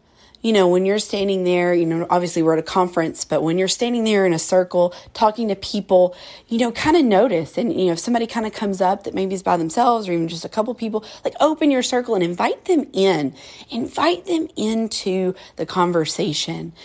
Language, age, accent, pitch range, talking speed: English, 40-59, American, 170-215 Hz, 220 wpm